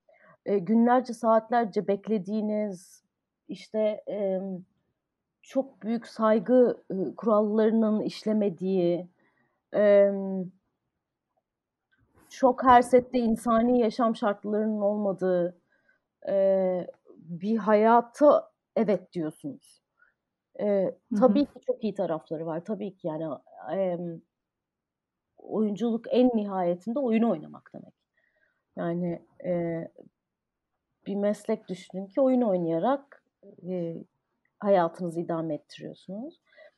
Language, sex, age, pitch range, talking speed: Turkish, female, 30-49, 185-240 Hz, 75 wpm